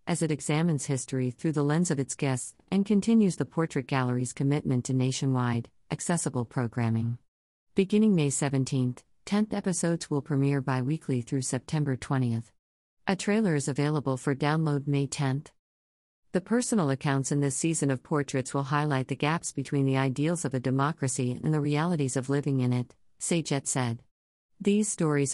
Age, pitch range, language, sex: 50-69, 130-160 Hz, English, female